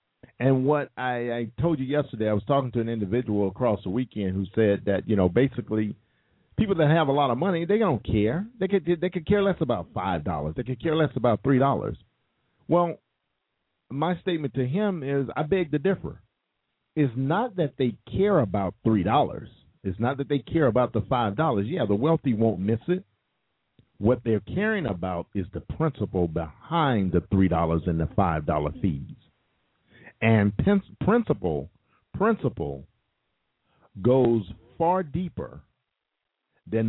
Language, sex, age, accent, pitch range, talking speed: English, male, 50-69, American, 100-145 Hz, 160 wpm